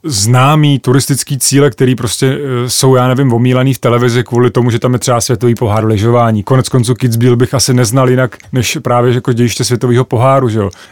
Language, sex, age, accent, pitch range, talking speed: Czech, male, 30-49, native, 120-135 Hz, 205 wpm